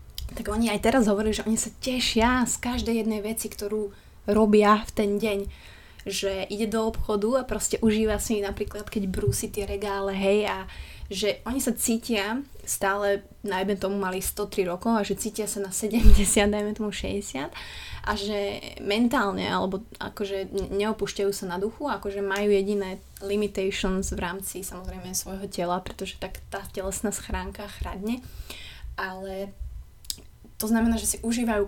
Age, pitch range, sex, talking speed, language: 20-39, 195-220 Hz, female, 155 wpm, Slovak